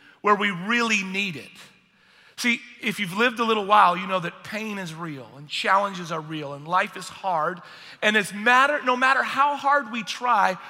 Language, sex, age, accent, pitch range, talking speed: English, male, 40-59, American, 190-250 Hz, 190 wpm